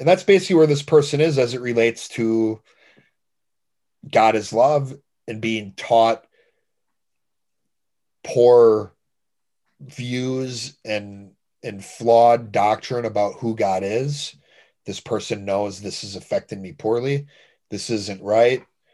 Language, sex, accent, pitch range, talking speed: English, male, American, 110-145 Hz, 120 wpm